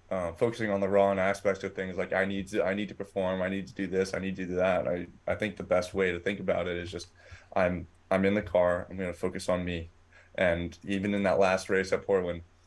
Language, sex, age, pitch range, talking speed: English, male, 20-39, 90-100 Hz, 270 wpm